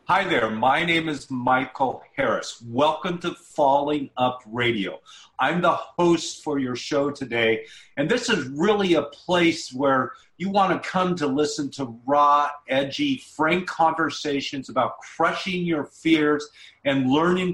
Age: 40-59